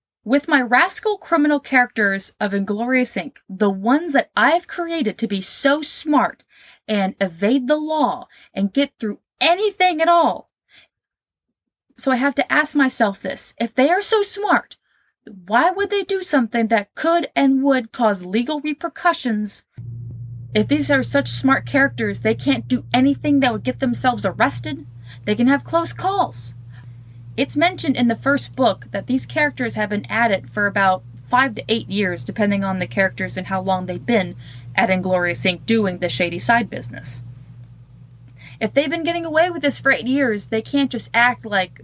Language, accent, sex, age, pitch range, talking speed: English, American, female, 20-39, 175-275 Hz, 175 wpm